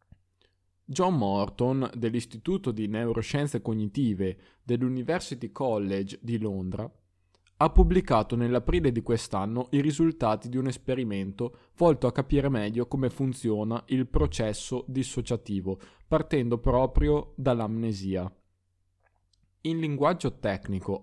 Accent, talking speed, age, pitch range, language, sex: native, 100 wpm, 20-39, 100-135 Hz, Italian, male